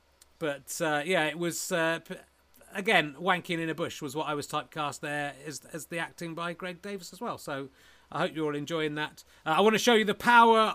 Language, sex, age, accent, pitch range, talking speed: English, male, 30-49, British, 140-180 Hz, 230 wpm